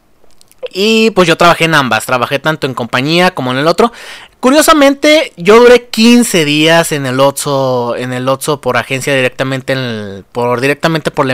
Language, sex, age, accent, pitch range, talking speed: Spanish, male, 30-49, Mexican, 130-180 Hz, 180 wpm